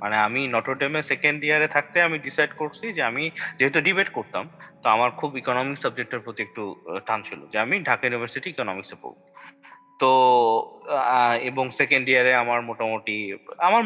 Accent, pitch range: native, 120-170 Hz